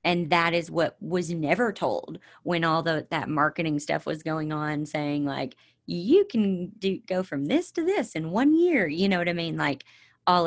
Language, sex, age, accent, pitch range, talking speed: English, female, 30-49, American, 150-185 Hz, 205 wpm